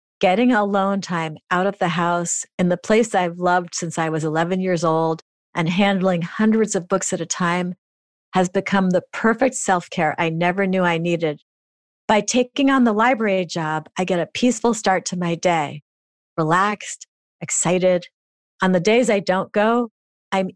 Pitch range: 165-205 Hz